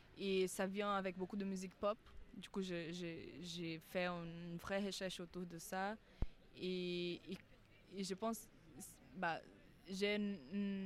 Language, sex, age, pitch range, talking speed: French, female, 20-39, 180-215 Hz, 160 wpm